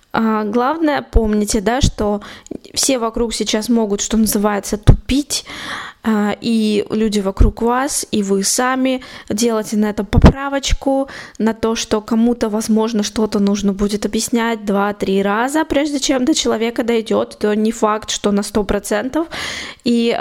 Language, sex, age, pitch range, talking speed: Russian, female, 20-39, 210-250 Hz, 135 wpm